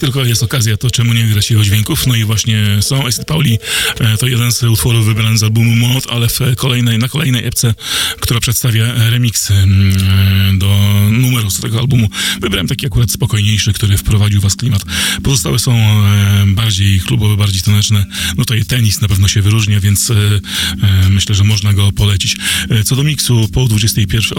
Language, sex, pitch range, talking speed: Polish, male, 100-120 Hz, 170 wpm